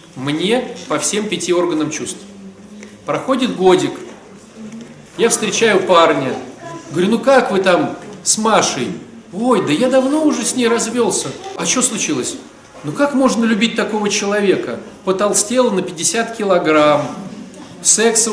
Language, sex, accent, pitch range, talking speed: Russian, male, native, 175-230 Hz, 130 wpm